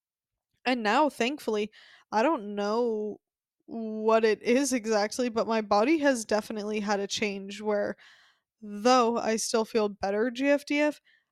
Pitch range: 210-260 Hz